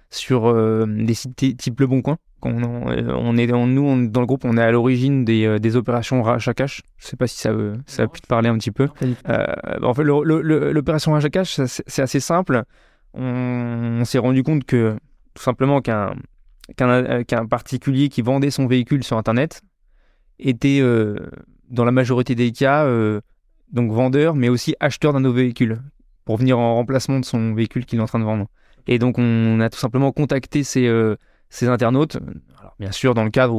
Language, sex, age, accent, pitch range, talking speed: French, male, 20-39, French, 115-135 Hz, 210 wpm